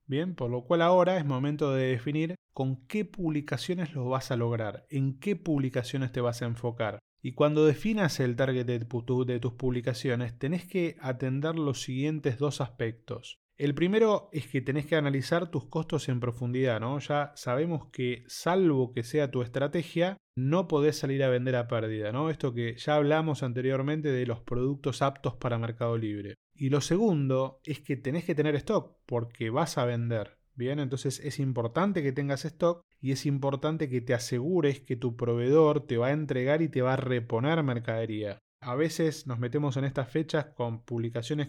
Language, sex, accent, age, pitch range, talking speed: Spanish, male, Argentinian, 20-39, 125-150 Hz, 185 wpm